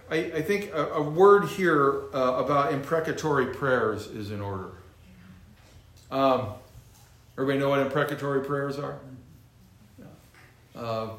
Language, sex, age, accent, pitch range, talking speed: English, male, 50-69, American, 110-140 Hz, 120 wpm